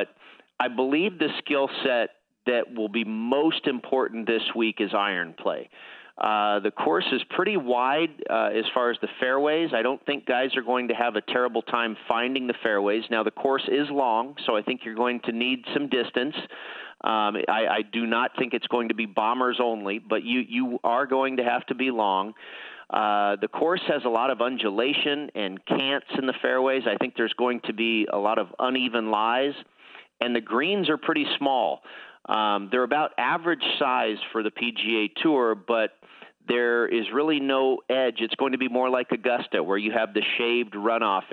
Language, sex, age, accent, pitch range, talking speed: English, male, 40-59, American, 110-130 Hz, 195 wpm